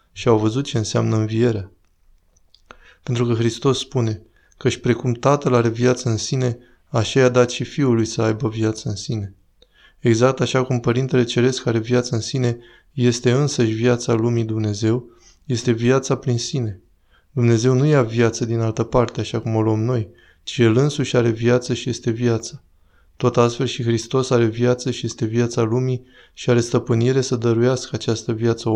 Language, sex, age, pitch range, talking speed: Romanian, male, 20-39, 110-125 Hz, 175 wpm